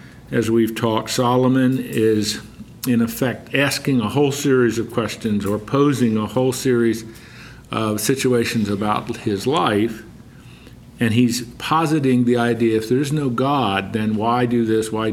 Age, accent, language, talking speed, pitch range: 50-69, American, English, 145 wpm, 110-135 Hz